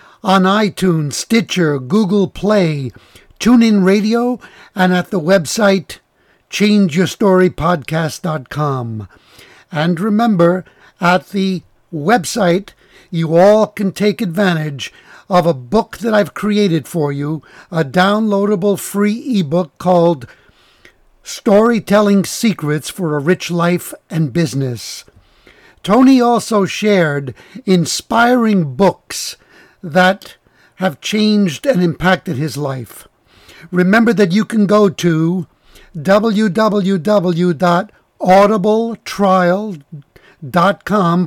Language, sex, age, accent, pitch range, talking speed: English, male, 60-79, American, 170-210 Hz, 90 wpm